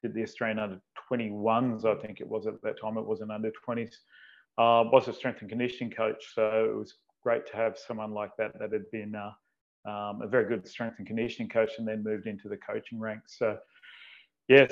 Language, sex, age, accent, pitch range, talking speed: English, male, 30-49, Australian, 110-125 Hz, 210 wpm